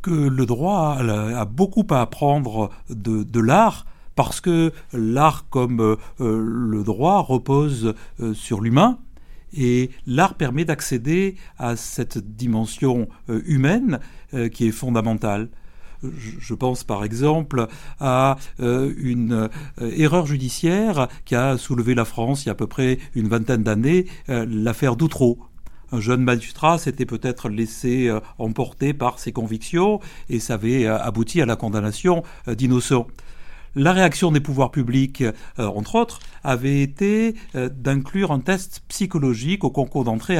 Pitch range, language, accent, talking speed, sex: 115-150 Hz, French, French, 130 wpm, male